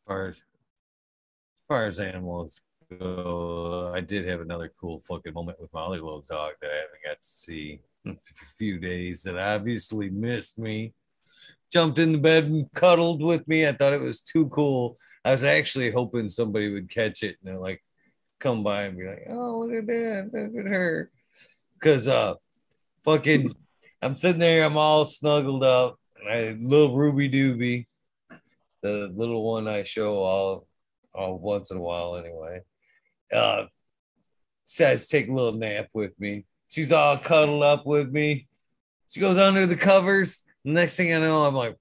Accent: American